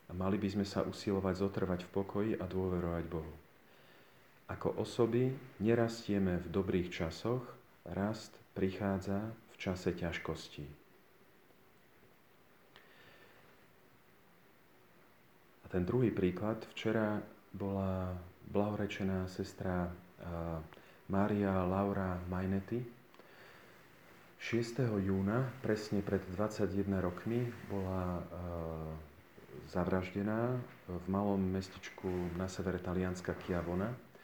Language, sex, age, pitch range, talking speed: Slovak, male, 40-59, 90-100 Hz, 90 wpm